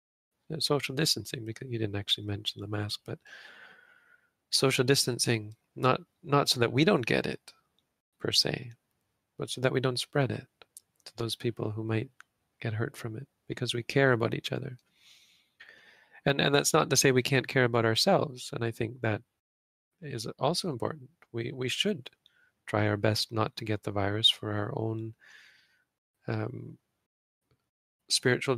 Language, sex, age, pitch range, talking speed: English, male, 40-59, 110-135 Hz, 165 wpm